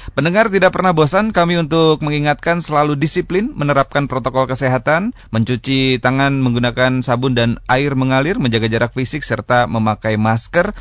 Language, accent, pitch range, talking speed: Indonesian, native, 120-160 Hz, 140 wpm